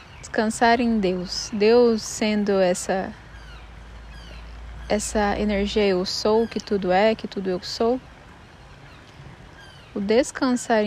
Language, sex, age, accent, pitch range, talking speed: Portuguese, female, 10-29, Brazilian, 205-245 Hz, 105 wpm